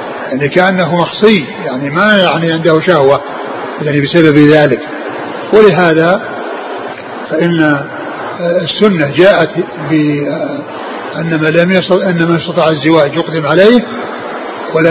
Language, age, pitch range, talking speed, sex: Arabic, 50-69, 160-185 Hz, 100 wpm, male